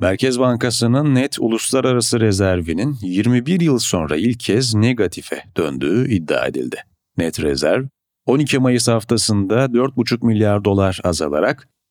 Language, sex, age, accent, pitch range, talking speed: Turkish, male, 40-59, native, 95-130 Hz, 115 wpm